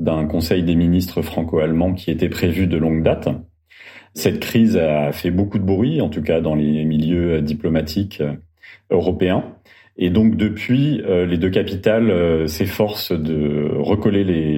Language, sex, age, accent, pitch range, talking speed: French, male, 40-59, French, 80-95 Hz, 150 wpm